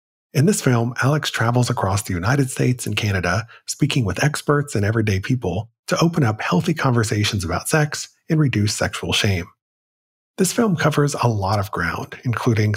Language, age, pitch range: English, 40-59, 105-140 Hz